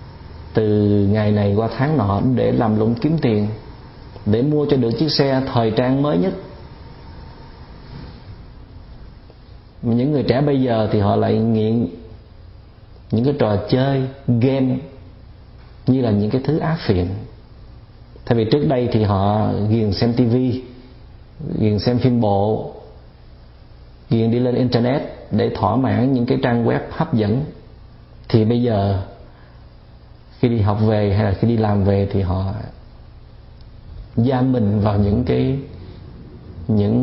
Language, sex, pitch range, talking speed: Vietnamese, male, 105-130 Hz, 145 wpm